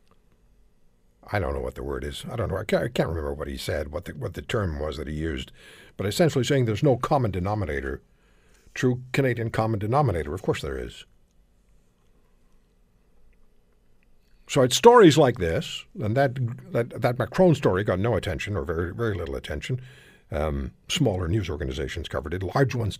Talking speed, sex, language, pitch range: 175 wpm, male, English, 85-145 Hz